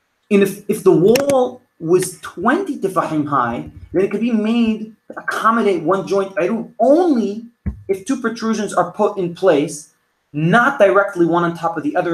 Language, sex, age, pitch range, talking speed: English, male, 30-49, 150-215 Hz, 170 wpm